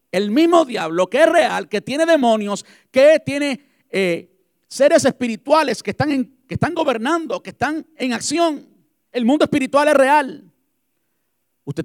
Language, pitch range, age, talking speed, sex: Spanish, 200-290 Hz, 50-69, 140 wpm, male